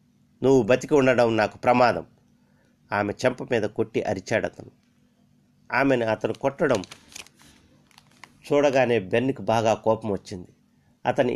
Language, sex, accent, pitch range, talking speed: Telugu, male, native, 105-130 Hz, 105 wpm